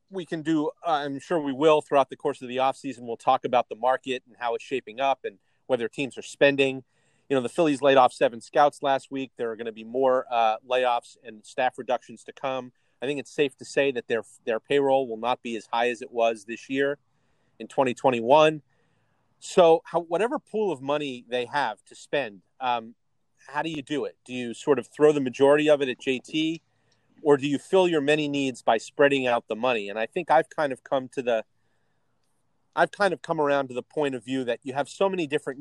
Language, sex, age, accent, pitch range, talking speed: English, male, 30-49, American, 125-150 Hz, 235 wpm